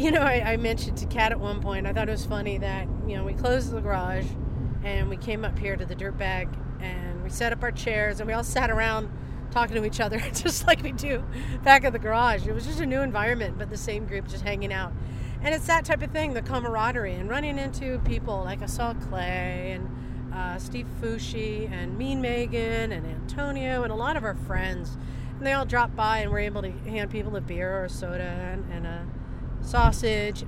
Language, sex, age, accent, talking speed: English, female, 40-59, American, 230 wpm